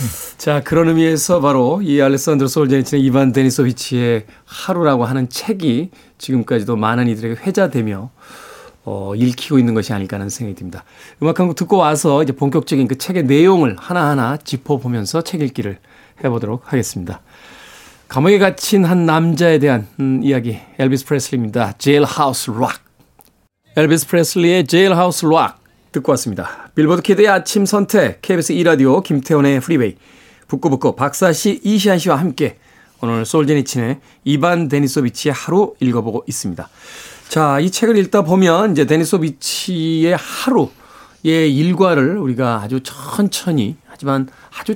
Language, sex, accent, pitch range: Korean, male, native, 130-175 Hz